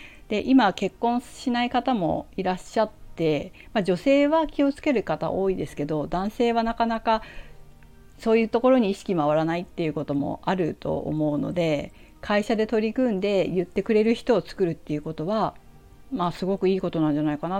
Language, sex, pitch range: Japanese, female, 155-215 Hz